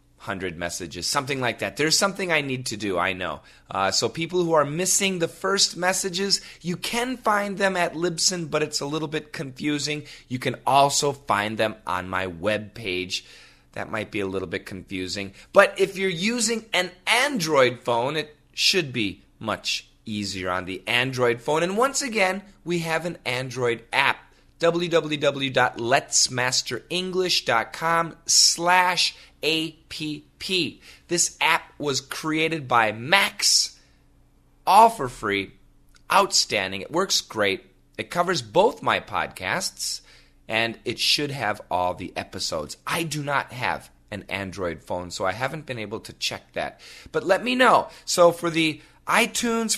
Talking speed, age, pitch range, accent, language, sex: 150 wpm, 30-49, 115-180 Hz, American, English, male